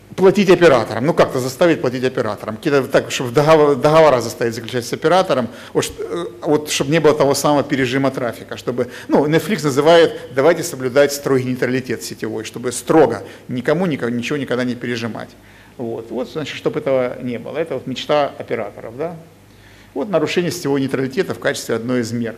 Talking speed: 155 wpm